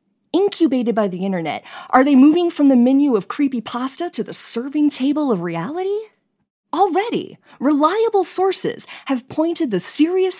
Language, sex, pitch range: English, female, 200-300 Hz